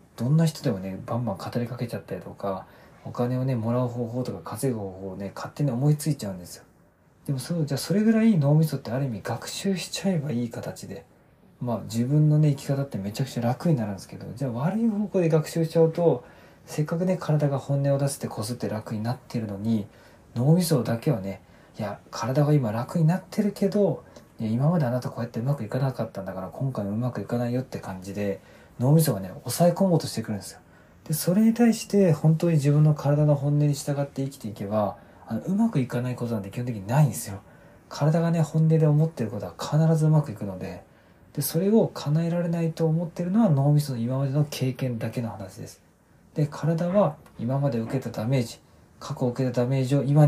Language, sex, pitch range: Japanese, male, 115-160 Hz